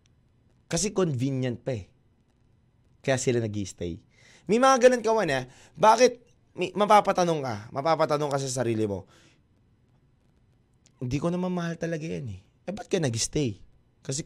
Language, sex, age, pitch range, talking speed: Filipino, male, 20-39, 115-145 Hz, 140 wpm